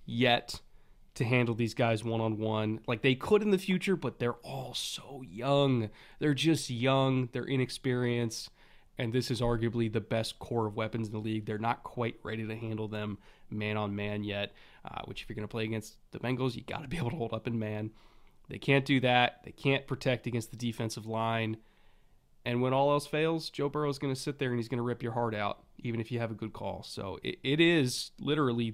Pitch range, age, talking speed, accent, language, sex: 115-145 Hz, 20-39, 220 wpm, American, English, male